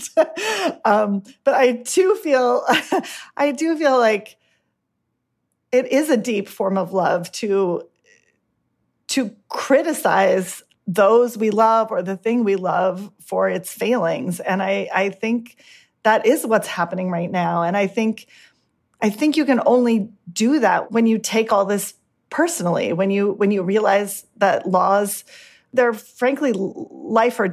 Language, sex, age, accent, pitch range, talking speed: English, female, 30-49, American, 185-230 Hz, 145 wpm